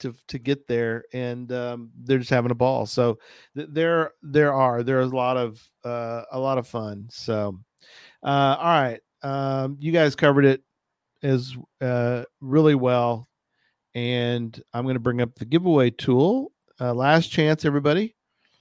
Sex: male